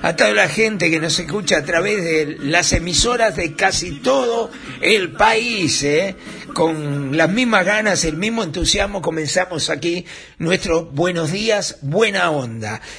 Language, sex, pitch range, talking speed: Spanish, male, 145-195 Hz, 150 wpm